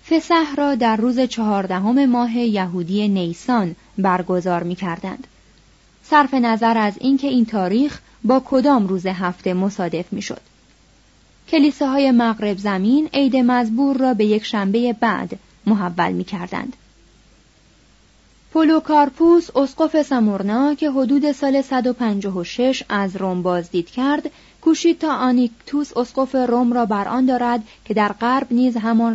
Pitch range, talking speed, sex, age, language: 205-265 Hz, 130 wpm, female, 30-49, Persian